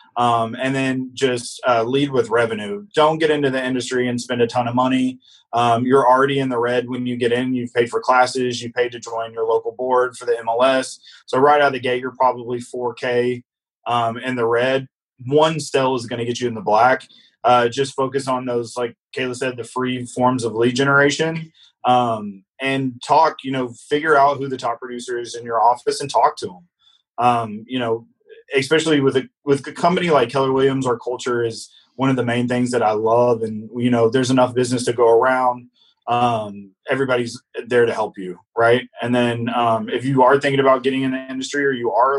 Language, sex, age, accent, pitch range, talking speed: English, male, 20-39, American, 120-135 Hz, 220 wpm